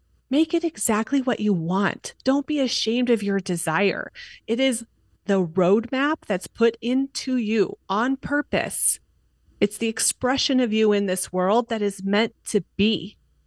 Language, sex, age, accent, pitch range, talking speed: English, female, 30-49, American, 185-240 Hz, 155 wpm